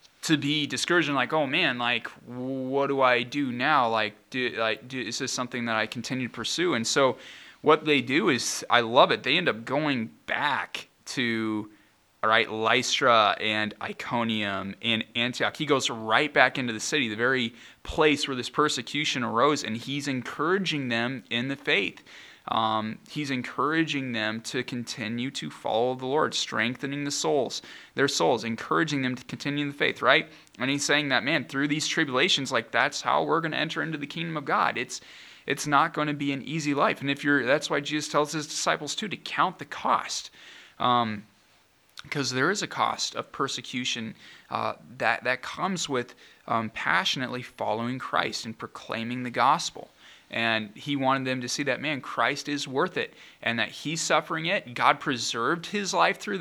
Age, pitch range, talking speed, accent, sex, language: 20-39, 115-145 Hz, 190 wpm, American, male, English